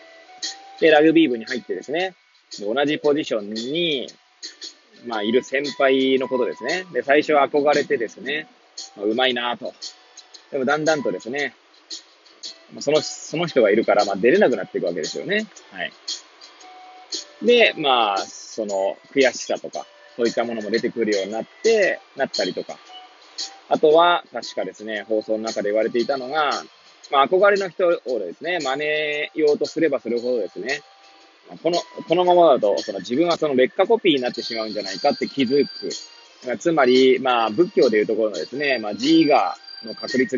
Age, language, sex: 20-39, Japanese, male